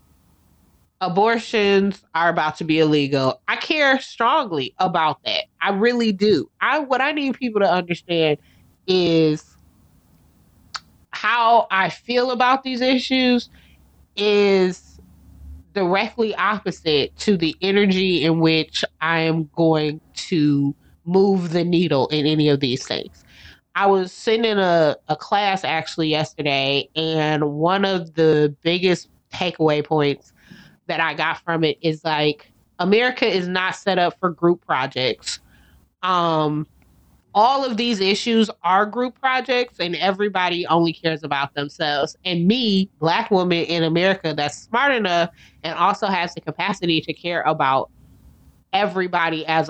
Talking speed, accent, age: 135 wpm, American, 30-49